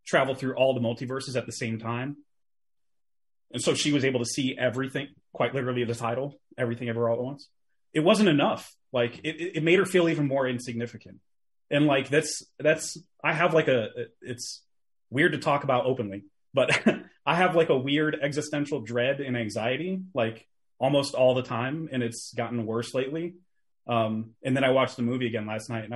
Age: 30-49